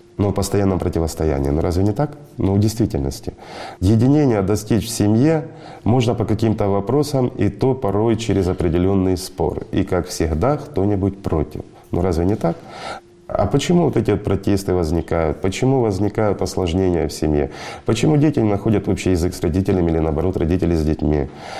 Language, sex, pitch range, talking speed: Russian, male, 85-110 Hz, 170 wpm